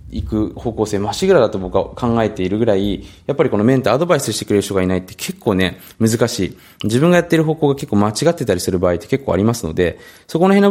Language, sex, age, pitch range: Japanese, male, 20-39, 95-145 Hz